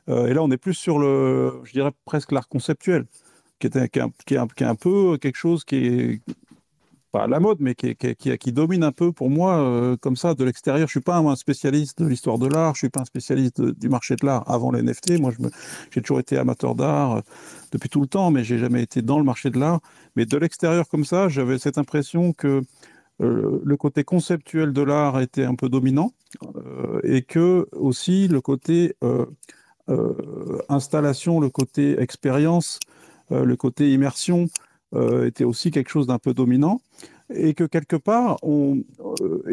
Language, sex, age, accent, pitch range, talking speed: French, male, 50-69, French, 135-170 Hz, 215 wpm